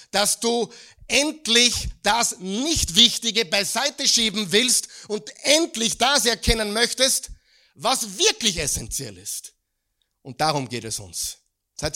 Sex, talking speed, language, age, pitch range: male, 110 wpm, German, 50-69, 150-205 Hz